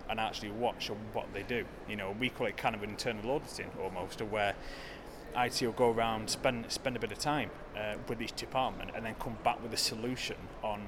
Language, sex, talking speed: English, male, 220 wpm